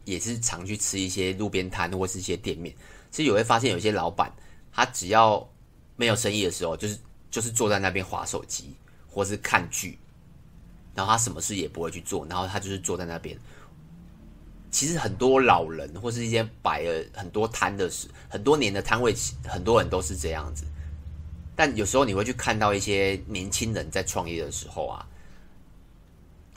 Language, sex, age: Chinese, male, 30-49